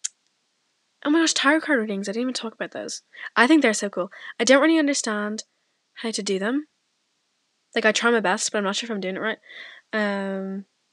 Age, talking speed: 10-29, 220 wpm